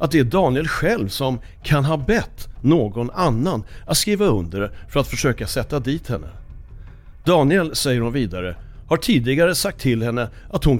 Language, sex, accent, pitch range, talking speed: Swedish, male, native, 110-155 Hz, 170 wpm